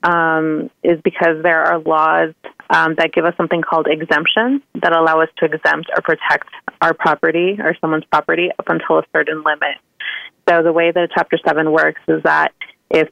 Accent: American